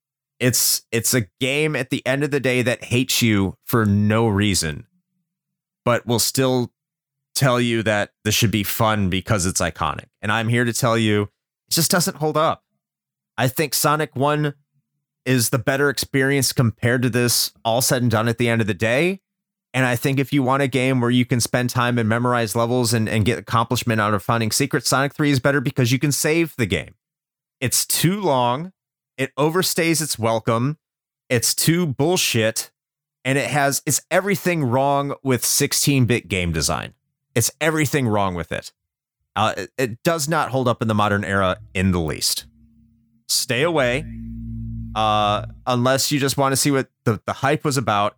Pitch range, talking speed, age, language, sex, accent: 115-150 Hz, 185 wpm, 30-49, English, male, American